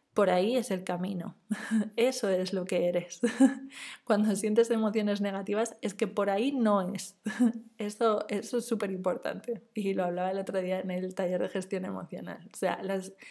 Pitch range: 185-225 Hz